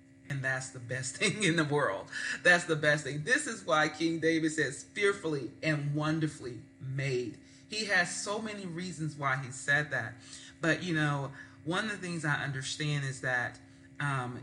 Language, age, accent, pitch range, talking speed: English, 30-49, American, 130-155 Hz, 180 wpm